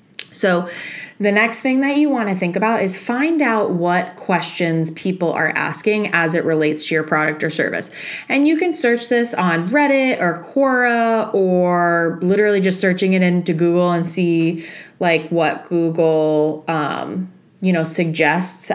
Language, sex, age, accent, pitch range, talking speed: English, female, 20-39, American, 165-200 Hz, 160 wpm